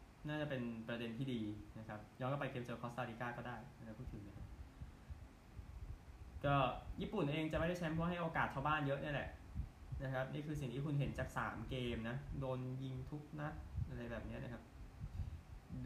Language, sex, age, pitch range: Thai, male, 20-39, 115-155 Hz